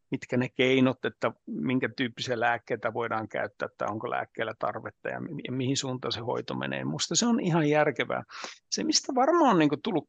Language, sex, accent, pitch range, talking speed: Finnish, male, native, 135-200 Hz, 190 wpm